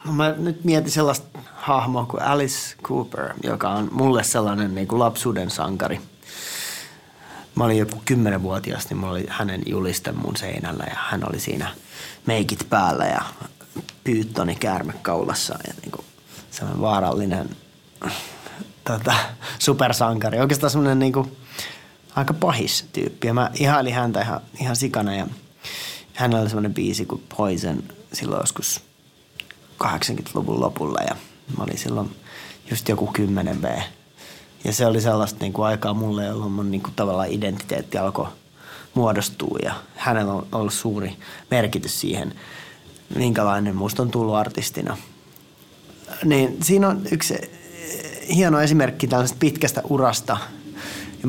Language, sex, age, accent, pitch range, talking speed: Finnish, male, 30-49, native, 105-135 Hz, 130 wpm